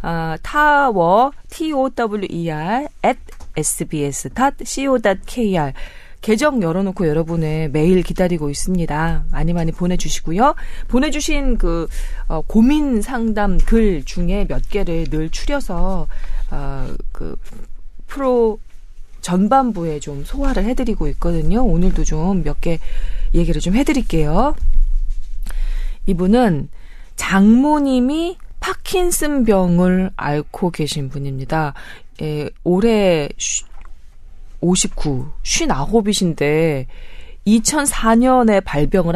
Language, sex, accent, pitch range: Korean, female, native, 155-230 Hz